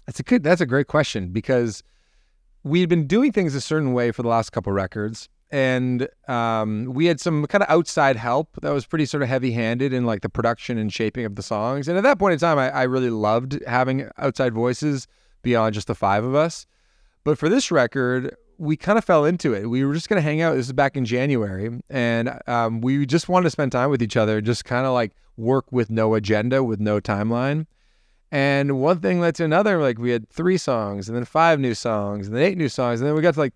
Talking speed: 245 wpm